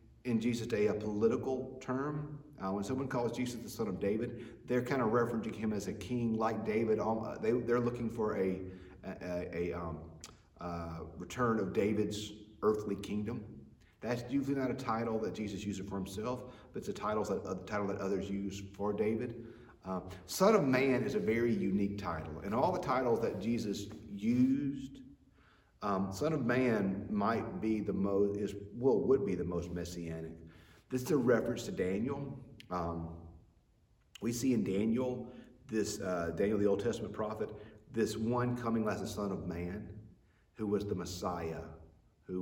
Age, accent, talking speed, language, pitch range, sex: 40-59, American, 175 wpm, English, 95-120 Hz, male